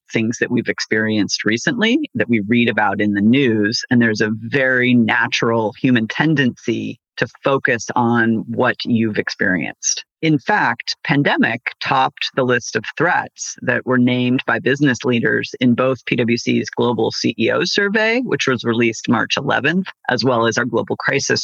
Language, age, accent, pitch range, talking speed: English, 40-59, American, 115-135 Hz, 155 wpm